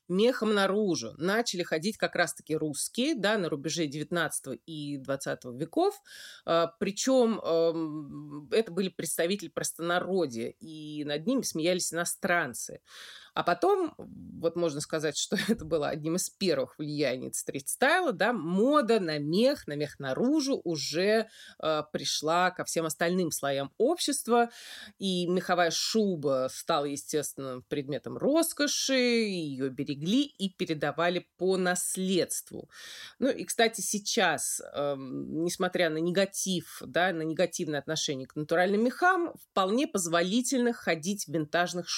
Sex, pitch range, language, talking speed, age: female, 155-215 Hz, Russian, 120 wpm, 20-39